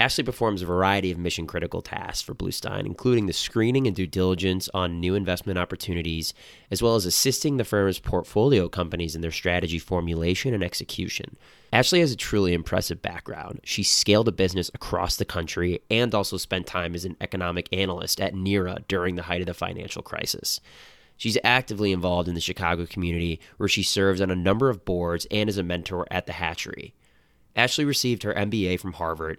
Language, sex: English, male